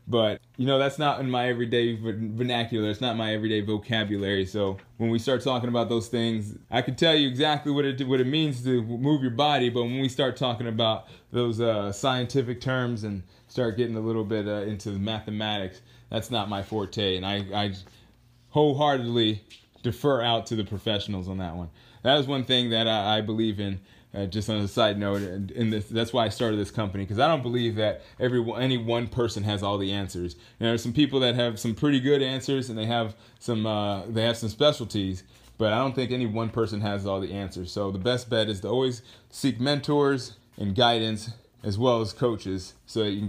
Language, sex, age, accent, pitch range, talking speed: English, male, 20-39, American, 105-130 Hz, 220 wpm